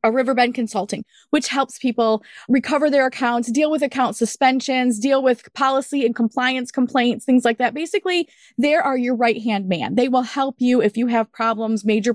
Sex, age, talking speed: female, 20-39, 185 wpm